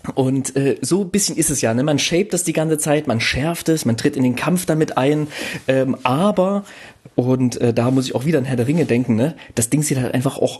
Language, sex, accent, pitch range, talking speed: German, male, German, 120-150 Hz, 260 wpm